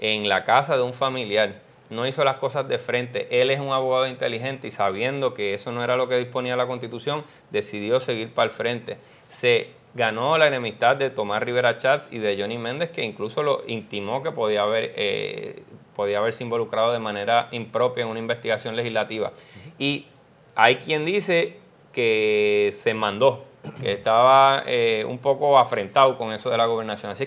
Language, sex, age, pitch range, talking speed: English, male, 30-49, 115-150 Hz, 180 wpm